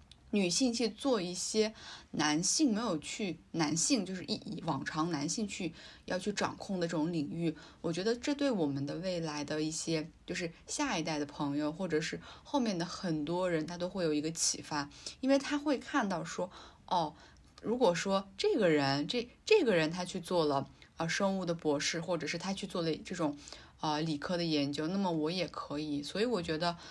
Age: 20-39